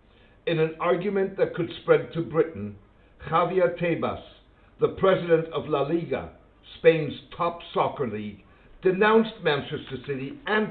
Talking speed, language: 130 wpm, English